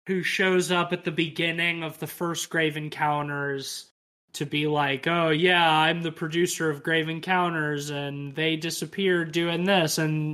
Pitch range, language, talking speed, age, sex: 150-180 Hz, English, 165 wpm, 20-39, male